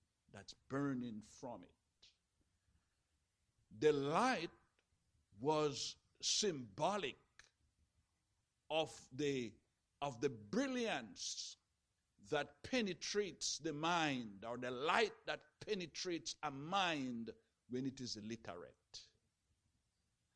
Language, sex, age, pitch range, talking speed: English, male, 60-79, 105-170 Hz, 85 wpm